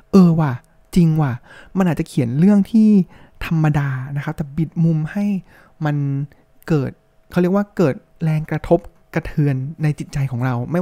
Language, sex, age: Thai, male, 20-39